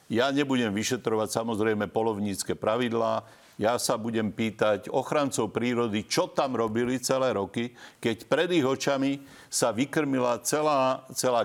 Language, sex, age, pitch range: Slovak, male, 50-69, 110-130 Hz